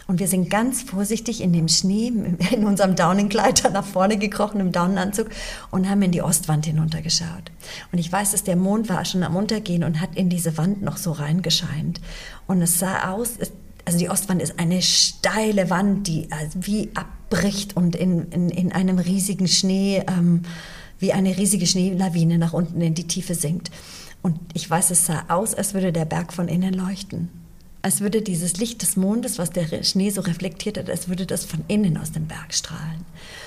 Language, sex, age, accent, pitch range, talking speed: German, female, 40-59, German, 175-200 Hz, 190 wpm